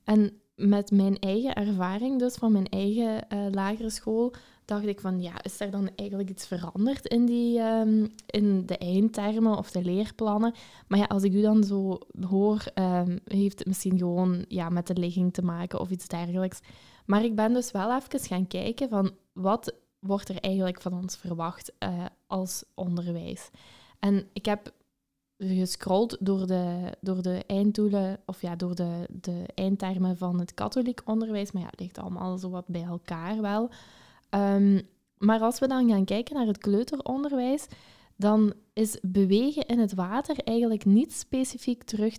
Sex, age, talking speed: female, 10-29, 165 wpm